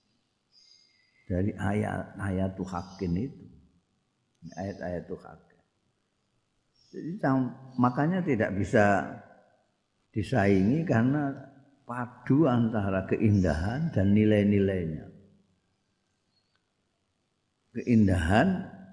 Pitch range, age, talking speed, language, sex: 90-120 Hz, 50-69, 55 wpm, Indonesian, male